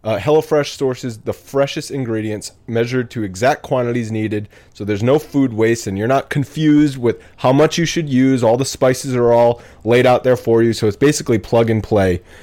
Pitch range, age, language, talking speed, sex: 110-135 Hz, 30-49, English, 205 wpm, male